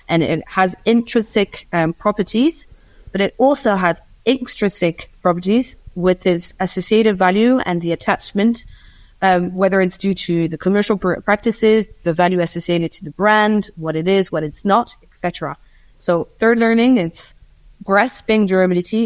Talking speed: 145 wpm